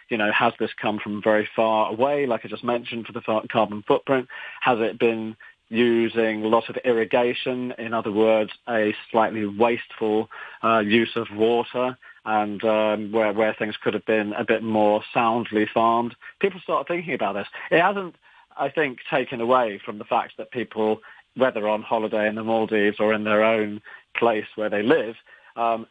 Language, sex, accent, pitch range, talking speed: English, male, British, 110-125 Hz, 180 wpm